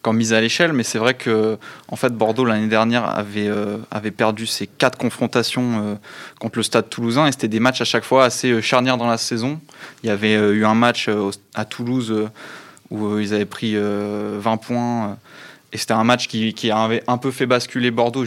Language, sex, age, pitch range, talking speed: French, male, 20-39, 110-125 Hz, 220 wpm